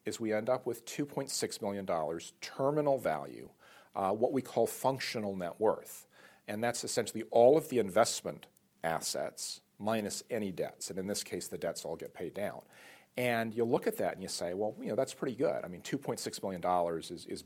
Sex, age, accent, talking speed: male, 50-69, American, 195 wpm